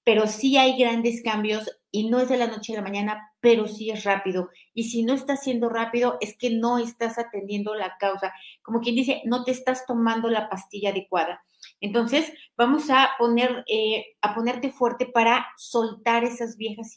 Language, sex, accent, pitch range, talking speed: Spanish, female, Mexican, 205-235 Hz, 180 wpm